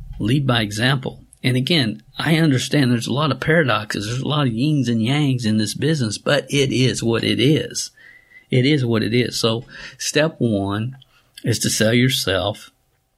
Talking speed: 180 wpm